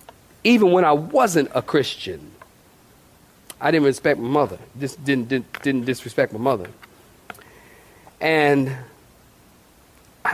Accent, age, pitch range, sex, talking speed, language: American, 40-59, 120-170 Hz, male, 115 wpm, English